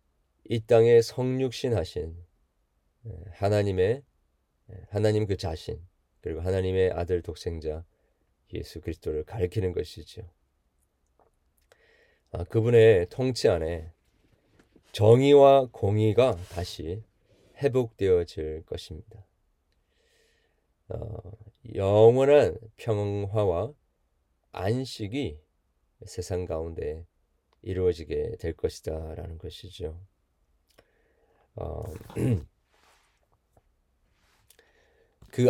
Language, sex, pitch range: Korean, male, 80-110 Hz